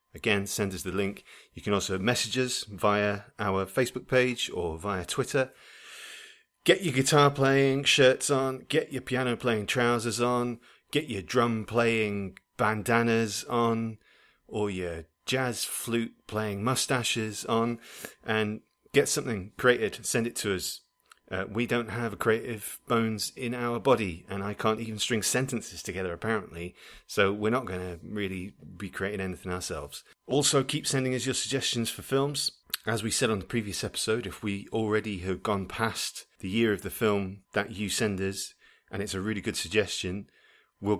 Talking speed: 165 wpm